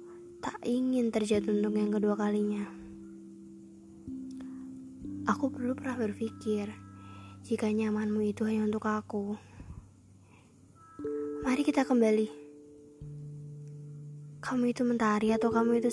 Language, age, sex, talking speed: Indonesian, 10-29, female, 95 wpm